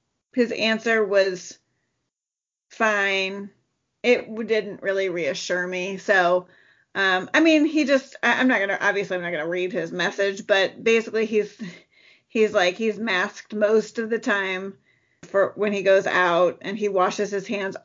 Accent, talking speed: American, 160 wpm